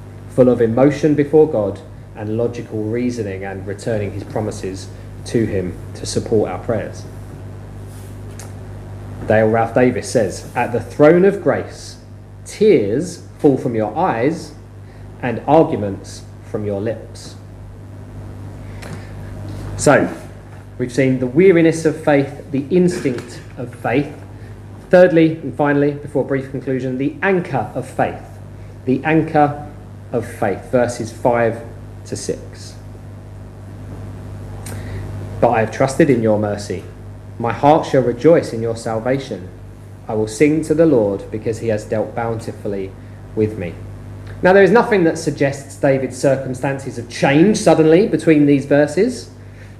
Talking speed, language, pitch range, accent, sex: 135 wpm, English, 105-135 Hz, British, male